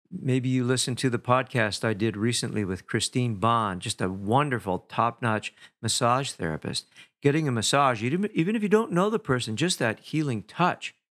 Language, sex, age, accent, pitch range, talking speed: English, male, 50-69, American, 95-130 Hz, 170 wpm